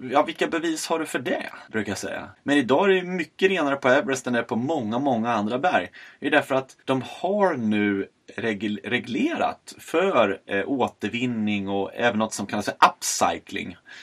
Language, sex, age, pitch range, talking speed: Swedish, male, 30-49, 105-150 Hz, 180 wpm